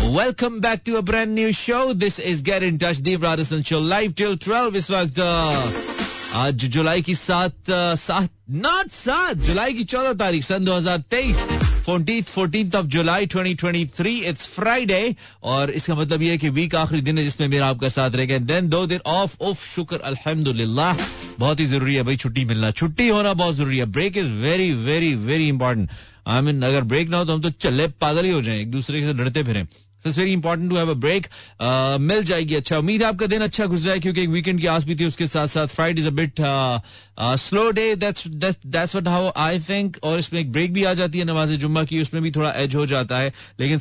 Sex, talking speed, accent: male, 150 wpm, native